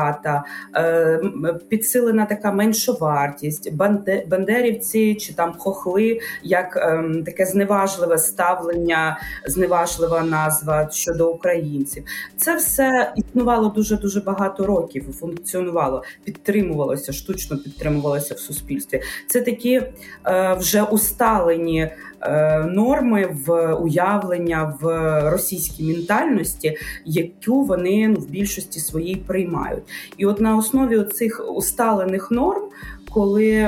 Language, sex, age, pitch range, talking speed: Ukrainian, female, 20-39, 165-215 Hz, 95 wpm